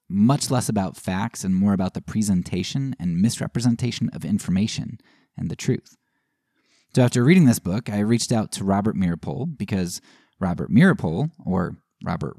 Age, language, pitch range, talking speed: 20-39, English, 100-130 Hz, 155 wpm